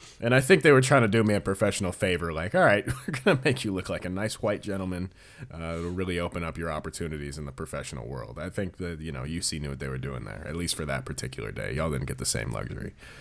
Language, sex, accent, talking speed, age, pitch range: English, male, American, 275 wpm, 30-49, 80-100 Hz